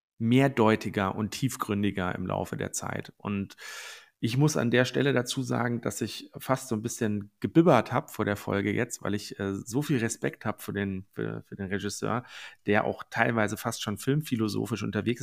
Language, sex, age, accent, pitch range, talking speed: German, male, 40-59, German, 105-125 Hz, 185 wpm